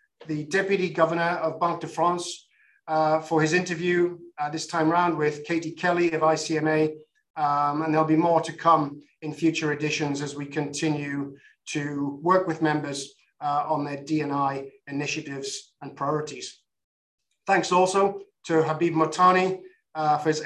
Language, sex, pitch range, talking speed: English, male, 150-180 Hz, 155 wpm